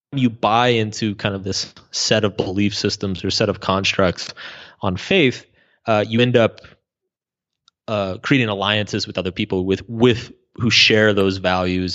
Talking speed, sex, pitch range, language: 160 wpm, male, 95-120 Hz, English